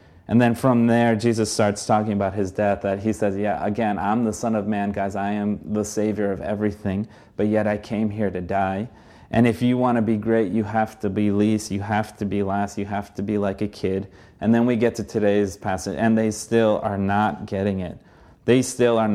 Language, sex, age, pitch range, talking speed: English, male, 30-49, 100-115 Hz, 235 wpm